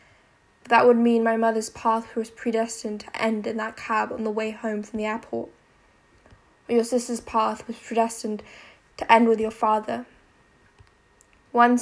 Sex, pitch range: female, 220-235 Hz